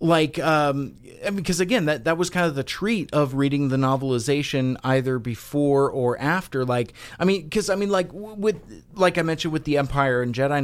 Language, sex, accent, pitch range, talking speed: English, male, American, 120-170 Hz, 205 wpm